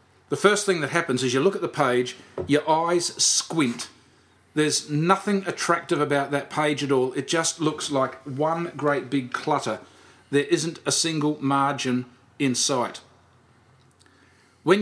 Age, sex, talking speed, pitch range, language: 40-59, male, 155 wpm, 130-165 Hz, English